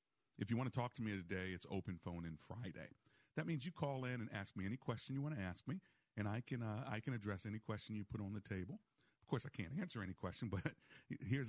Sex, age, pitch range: male, 50-69, 90-120 Hz